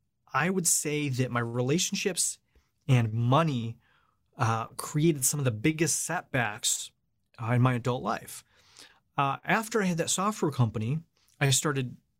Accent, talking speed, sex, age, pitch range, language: American, 145 wpm, male, 30-49, 115-155 Hz, English